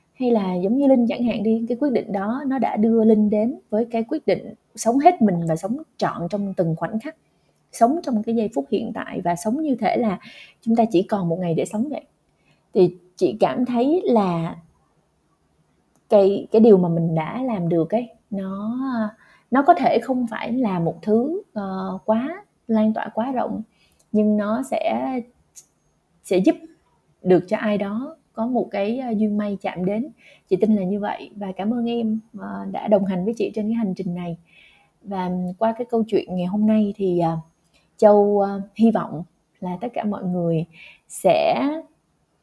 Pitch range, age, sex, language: 195-245 Hz, 20-39, female, Vietnamese